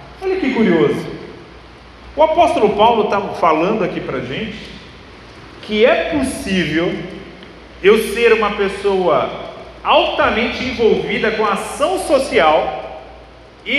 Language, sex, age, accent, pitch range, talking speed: Portuguese, male, 40-59, Brazilian, 205-255 Hz, 105 wpm